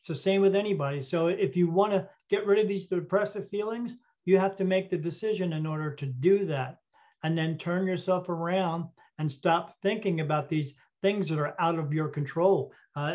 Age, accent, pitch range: 50-69, American, 155-195 Hz